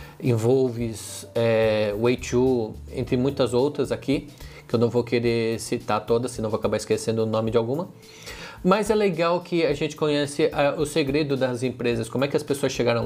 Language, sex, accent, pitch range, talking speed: Portuguese, male, Brazilian, 115-130 Hz, 185 wpm